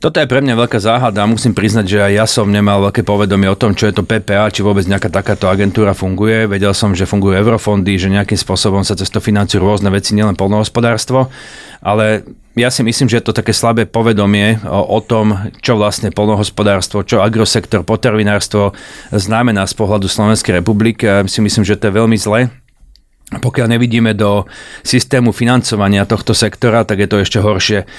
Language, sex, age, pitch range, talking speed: Slovak, male, 30-49, 100-115 Hz, 180 wpm